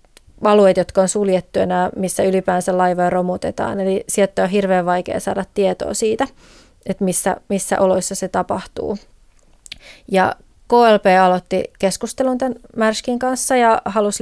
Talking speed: 135 wpm